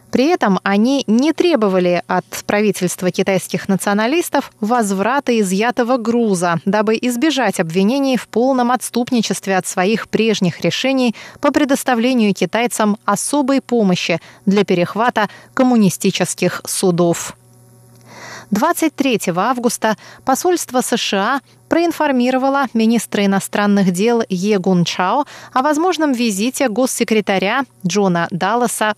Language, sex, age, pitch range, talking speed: Russian, female, 20-39, 190-255 Hz, 95 wpm